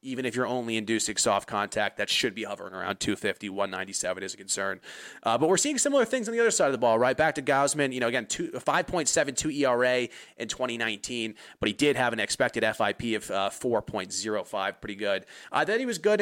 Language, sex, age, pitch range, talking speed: English, male, 30-49, 115-145 Hz, 205 wpm